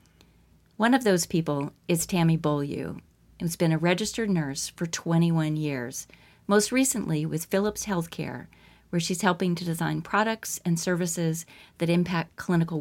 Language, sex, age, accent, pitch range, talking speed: English, female, 40-59, American, 160-195 Hz, 145 wpm